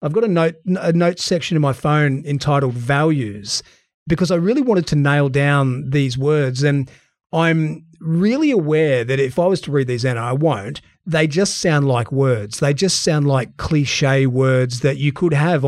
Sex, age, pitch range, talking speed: male, 30-49, 135-165 Hz, 190 wpm